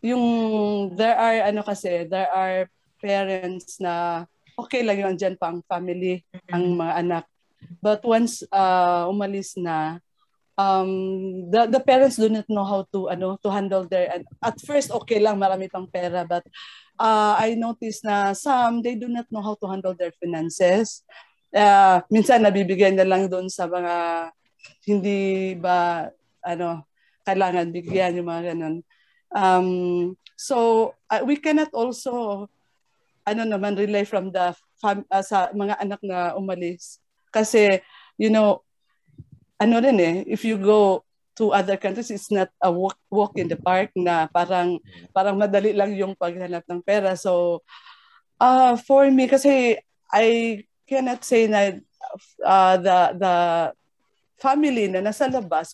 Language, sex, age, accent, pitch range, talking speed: English, female, 20-39, Filipino, 180-220 Hz, 145 wpm